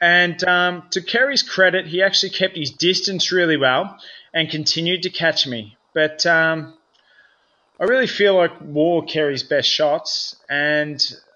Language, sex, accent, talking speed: English, male, Australian, 150 wpm